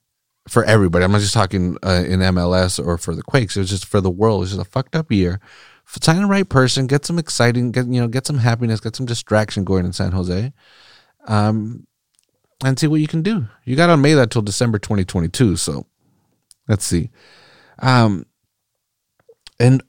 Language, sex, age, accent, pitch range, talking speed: English, male, 30-49, American, 95-130 Hz, 190 wpm